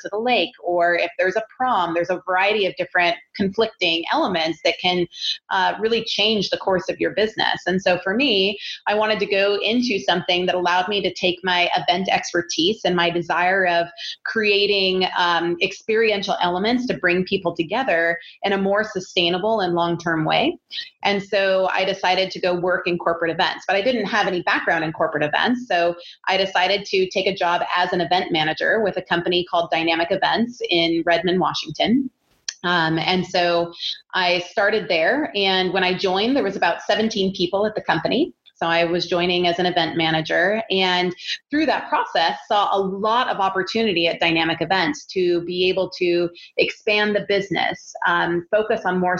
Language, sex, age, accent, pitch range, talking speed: English, female, 30-49, American, 175-210 Hz, 185 wpm